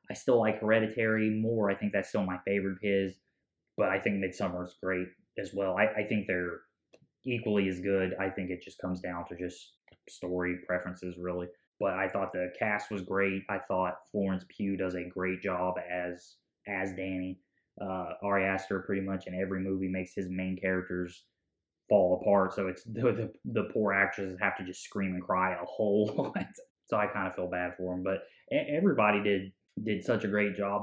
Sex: male